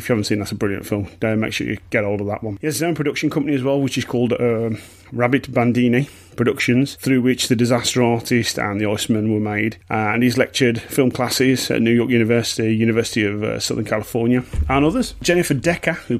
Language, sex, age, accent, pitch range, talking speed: English, male, 30-49, British, 105-130 Hz, 230 wpm